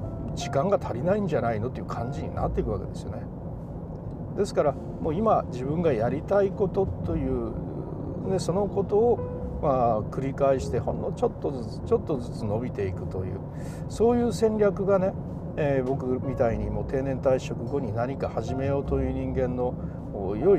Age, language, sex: 60-79, Japanese, male